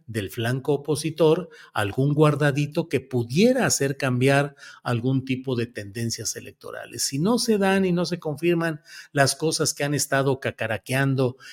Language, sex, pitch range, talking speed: Spanish, male, 125-165 Hz, 145 wpm